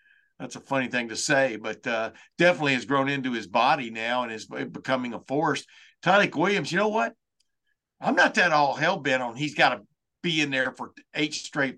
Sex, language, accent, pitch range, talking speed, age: male, English, American, 130-155 Hz, 205 wpm, 50-69